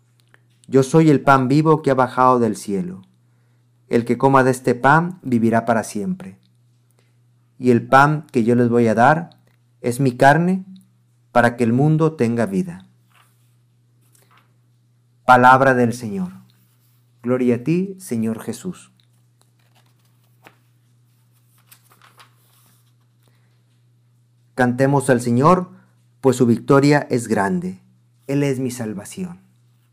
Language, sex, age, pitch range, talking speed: Spanish, male, 50-69, 120-135 Hz, 115 wpm